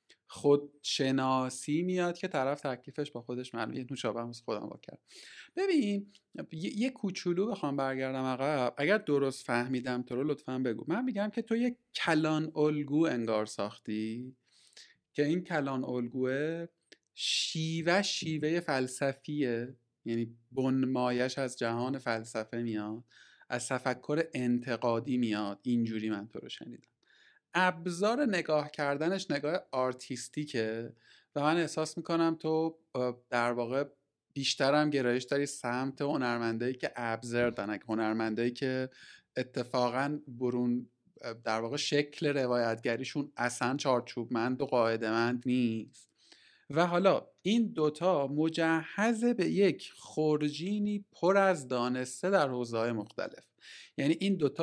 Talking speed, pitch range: 120 wpm, 120-155 Hz